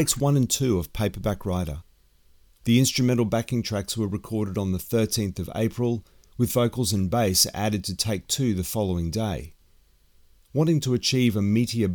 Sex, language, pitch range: male, English, 90-120 Hz